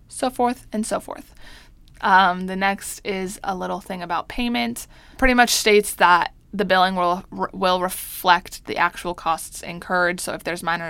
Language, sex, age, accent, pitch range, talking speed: English, female, 20-39, American, 170-210 Hz, 170 wpm